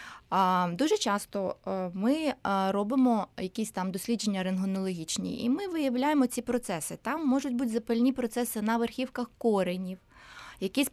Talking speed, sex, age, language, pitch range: 120 wpm, female, 20-39, Ukrainian, 200-255 Hz